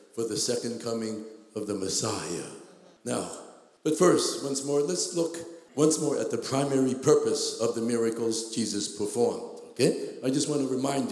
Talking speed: 165 wpm